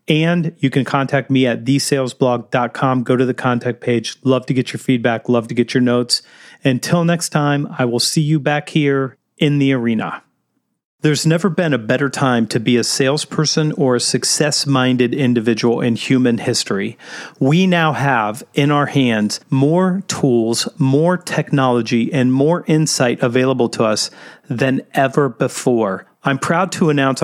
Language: English